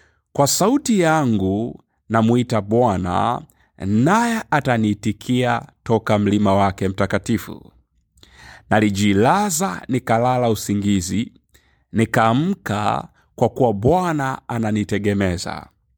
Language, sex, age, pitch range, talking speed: Swahili, male, 50-69, 100-130 Hz, 70 wpm